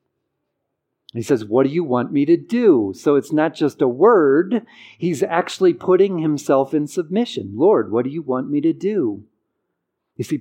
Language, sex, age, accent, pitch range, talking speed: English, male, 50-69, American, 125-170 Hz, 180 wpm